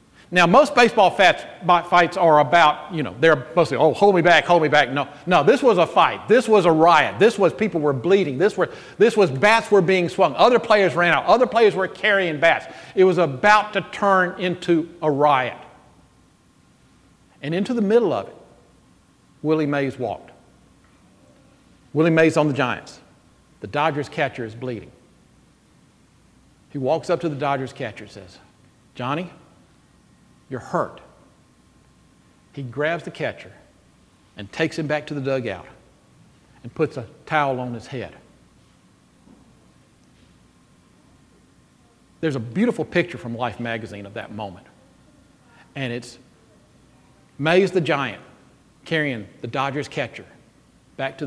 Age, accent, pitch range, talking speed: 50-69, American, 130-185 Hz, 150 wpm